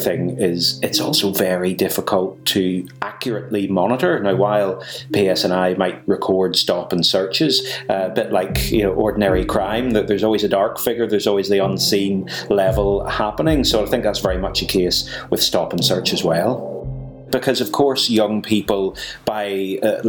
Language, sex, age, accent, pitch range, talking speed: English, male, 30-49, British, 95-115 Hz, 180 wpm